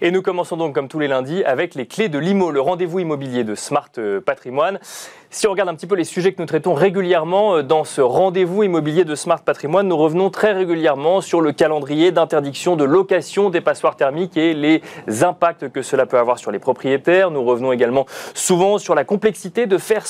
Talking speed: 210 wpm